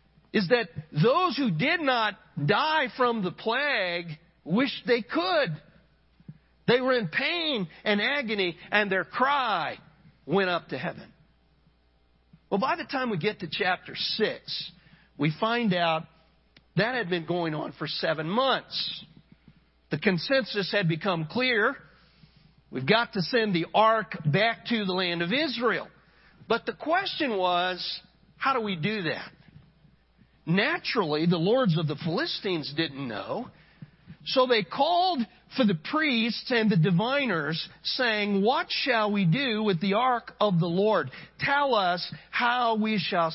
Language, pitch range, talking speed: English, 165-230 Hz, 145 wpm